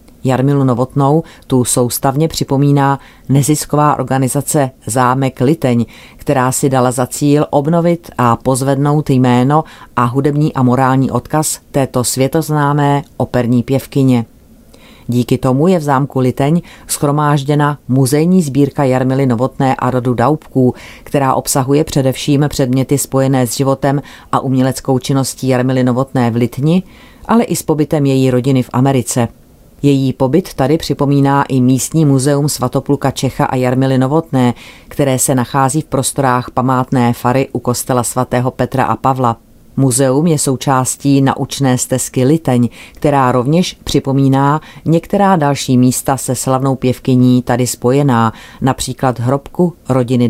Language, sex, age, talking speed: Czech, female, 40-59, 130 wpm